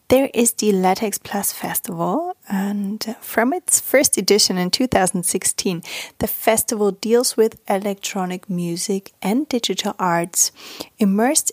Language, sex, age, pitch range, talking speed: English, female, 30-49, 180-225 Hz, 120 wpm